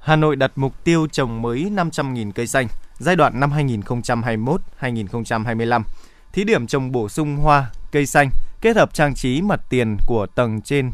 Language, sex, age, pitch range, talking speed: Vietnamese, male, 20-39, 120-155 Hz, 170 wpm